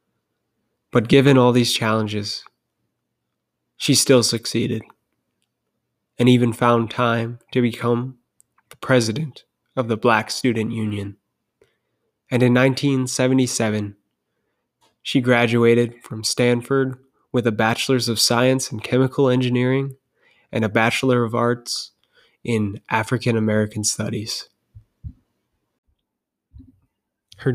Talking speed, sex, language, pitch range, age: 100 wpm, male, English, 110-125 Hz, 20-39